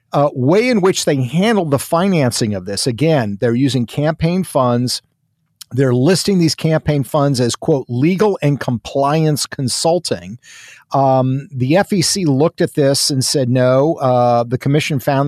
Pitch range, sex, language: 125-160 Hz, male, English